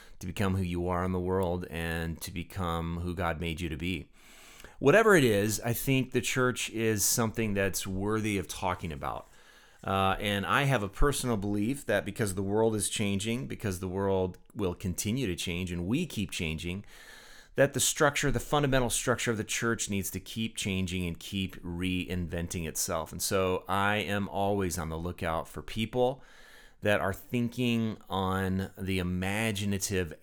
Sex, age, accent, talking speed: male, 30-49, American, 175 wpm